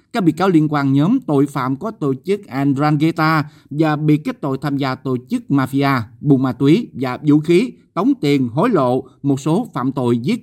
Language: Vietnamese